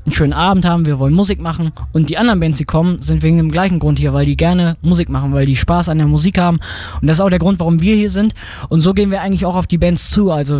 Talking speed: 300 wpm